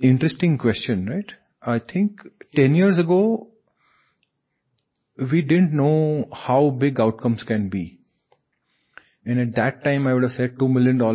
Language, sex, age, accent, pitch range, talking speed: English, male, 30-49, Indian, 110-145 Hz, 140 wpm